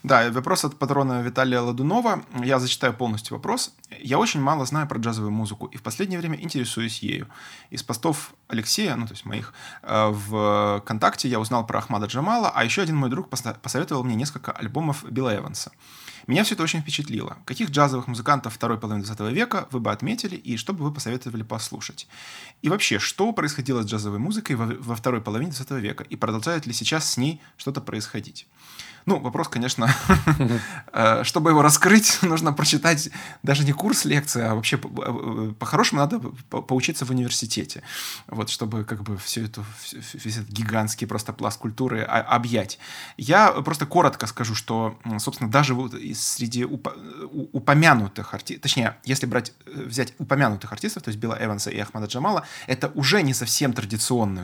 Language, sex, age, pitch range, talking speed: Russian, male, 20-39, 110-145 Hz, 165 wpm